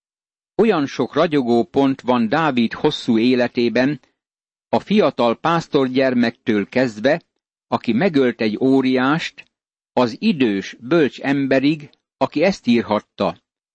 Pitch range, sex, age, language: 115-145 Hz, male, 60-79, Hungarian